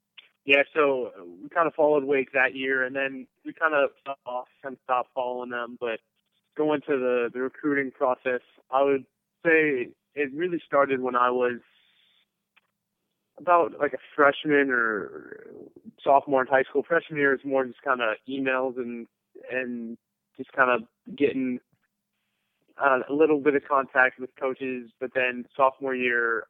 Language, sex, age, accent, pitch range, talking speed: English, male, 20-39, American, 115-140 Hz, 155 wpm